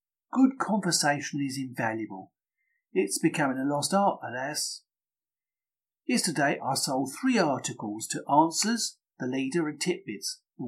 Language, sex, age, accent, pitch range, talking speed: English, male, 50-69, British, 135-200 Hz, 125 wpm